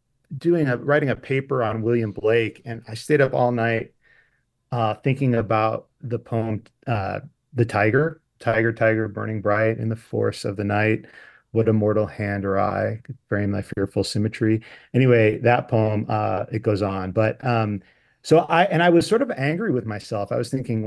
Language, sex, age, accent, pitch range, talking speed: English, male, 40-59, American, 105-125 Hz, 185 wpm